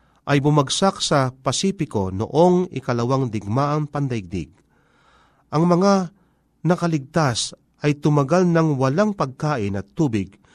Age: 40-59